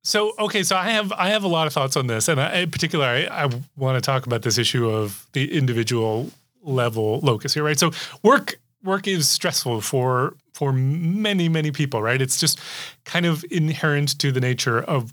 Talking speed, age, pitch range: 205 wpm, 30-49, 125-165 Hz